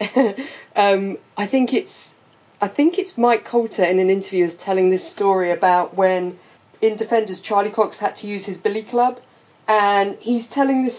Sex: female